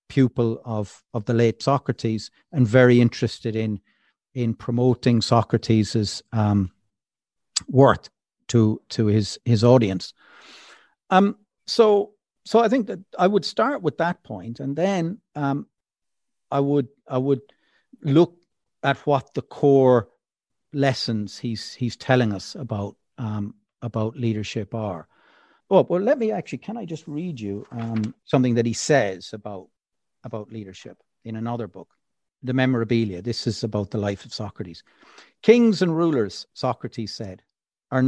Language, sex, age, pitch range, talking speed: English, male, 50-69, 110-150 Hz, 145 wpm